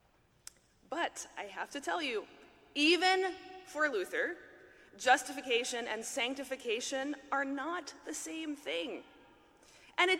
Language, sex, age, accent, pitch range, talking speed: English, female, 20-39, American, 245-335 Hz, 110 wpm